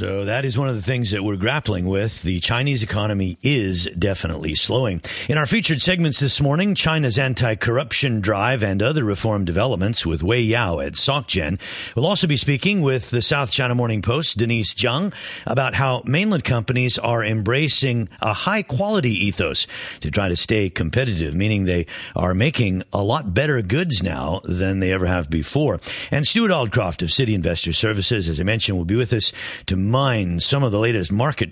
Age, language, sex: 50-69, English, male